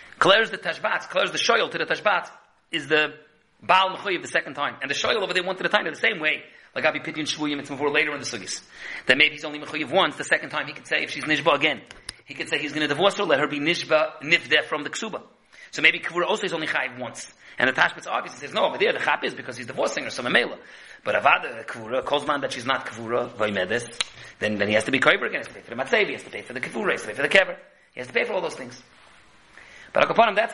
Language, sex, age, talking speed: English, male, 30-49, 295 wpm